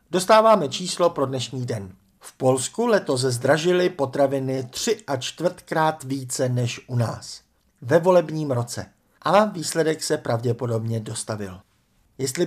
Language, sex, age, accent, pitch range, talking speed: Czech, male, 50-69, native, 125-185 Hz, 130 wpm